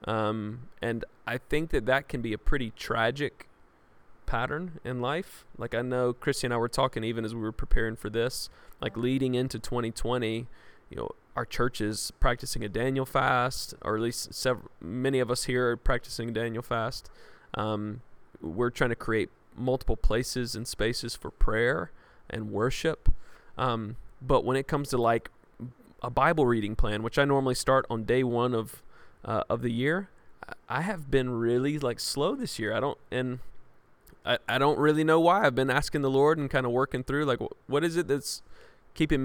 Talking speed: 190 wpm